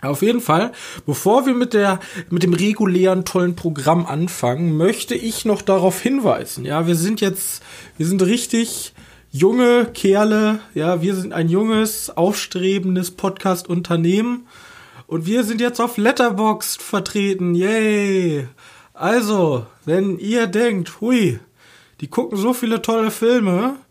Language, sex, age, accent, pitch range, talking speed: German, male, 20-39, German, 170-220 Hz, 135 wpm